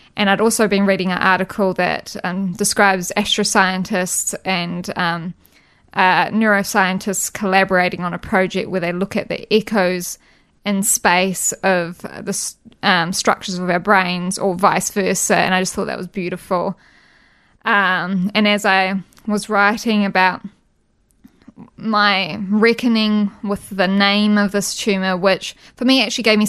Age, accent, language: 20-39, Australian, English